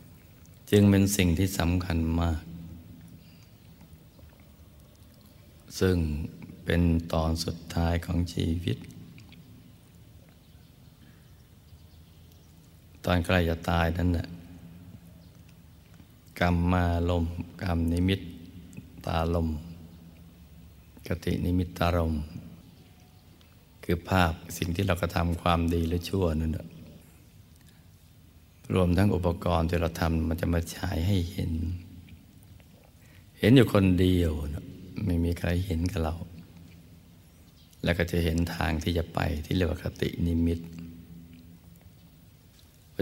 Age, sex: 60-79, male